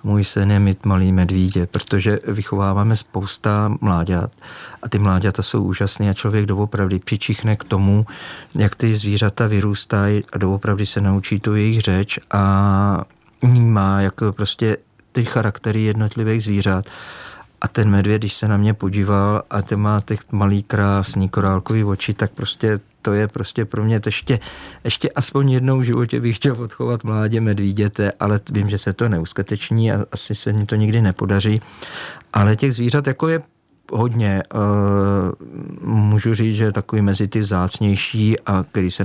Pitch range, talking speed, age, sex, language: 95-110 Hz, 155 wpm, 40-59, male, Czech